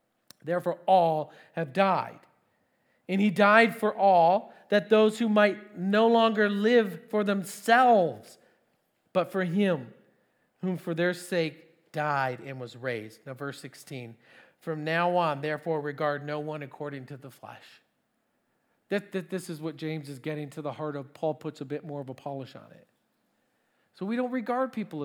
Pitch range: 150-185 Hz